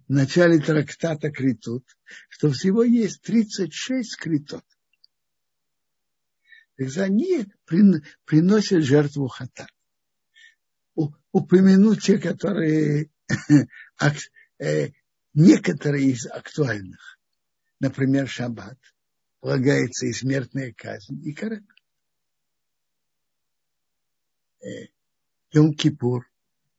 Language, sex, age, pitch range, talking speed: Russian, male, 60-79, 135-190 Hz, 65 wpm